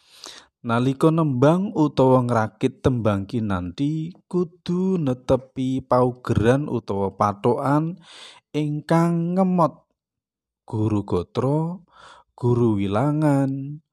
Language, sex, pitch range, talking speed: Indonesian, male, 105-160 Hz, 80 wpm